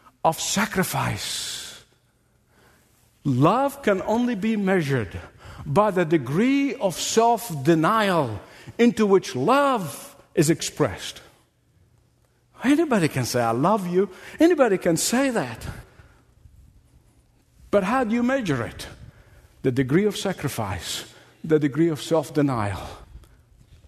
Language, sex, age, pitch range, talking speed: English, male, 60-79, 165-230 Hz, 105 wpm